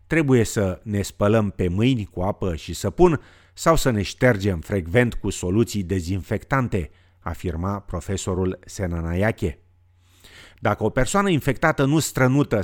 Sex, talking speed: male, 130 wpm